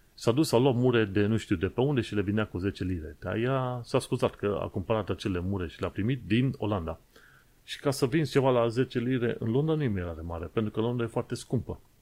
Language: Romanian